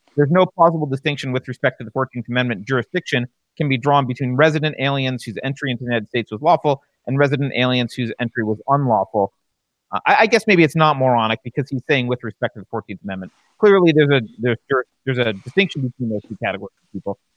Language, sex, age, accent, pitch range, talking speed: English, male, 30-49, American, 125-165 Hz, 215 wpm